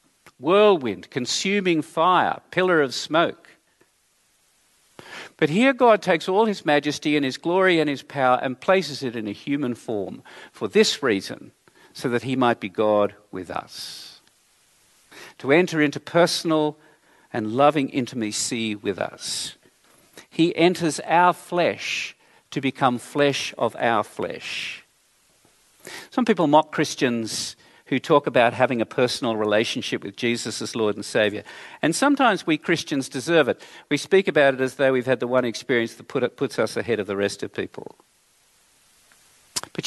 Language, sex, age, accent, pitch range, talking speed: English, male, 50-69, Australian, 115-170 Hz, 155 wpm